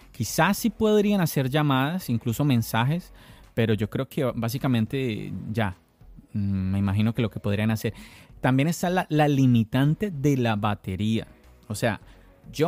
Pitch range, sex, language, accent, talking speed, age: 110-140 Hz, male, Spanish, Colombian, 145 wpm, 30-49